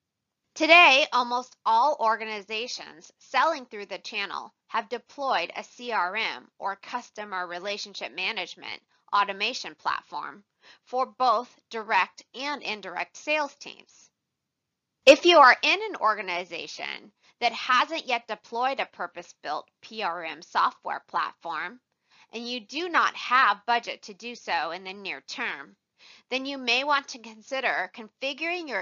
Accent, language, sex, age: American, English, female, 20-39